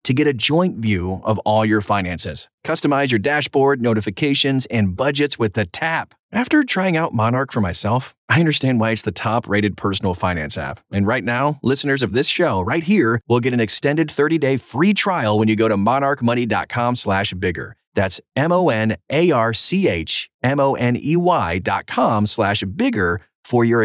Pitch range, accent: 105-150 Hz, American